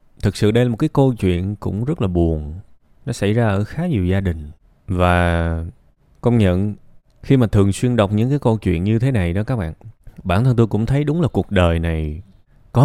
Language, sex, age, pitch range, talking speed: Vietnamese, male, 20-39, 90-130 Hz, 230 wpm